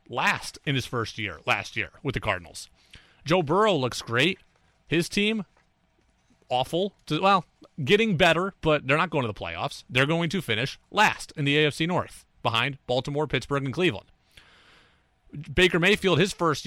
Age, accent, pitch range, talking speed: 30-49, American, 125-165 Hz, 160 wpm